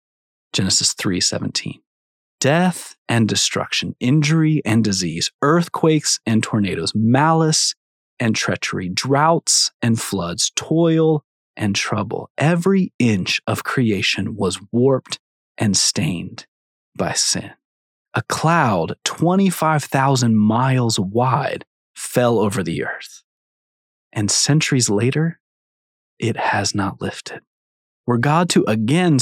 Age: 30-49